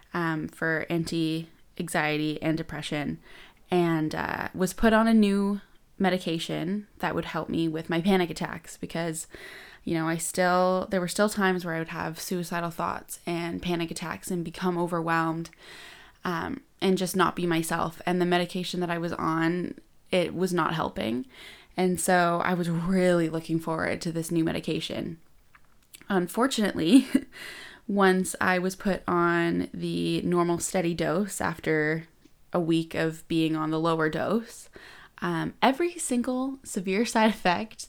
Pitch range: 165-200 Hz